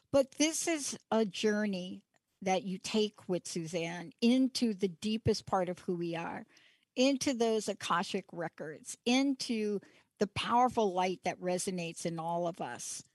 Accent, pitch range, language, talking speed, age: American, 185-225 Hz, English, 145 wpm, 60-79